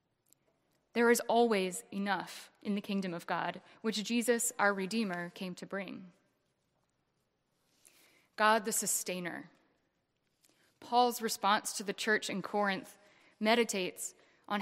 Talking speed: 115 wpm